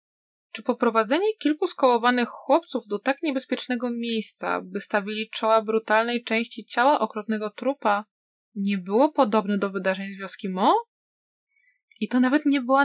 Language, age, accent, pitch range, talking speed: Polish, 20-39, native, 210-270 Hz, 140 wpm